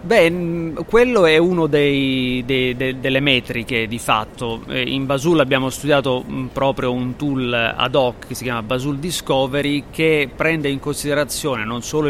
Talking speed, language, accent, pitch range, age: 155 wpm, Italian, native, 120-145 Hz, 30-49